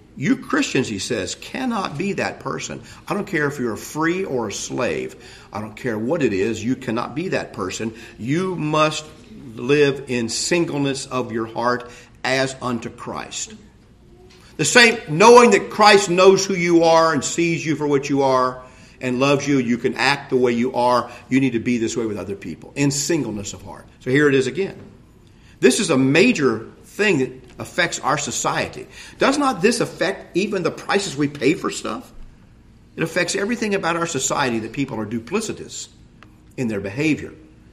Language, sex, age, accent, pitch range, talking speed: English, male, 50-69, American, 110-155 Hz, 185 wpm